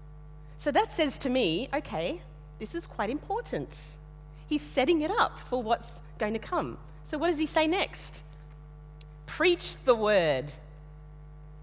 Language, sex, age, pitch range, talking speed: English, female, 40-59, 150-250 Hz, 145 wpm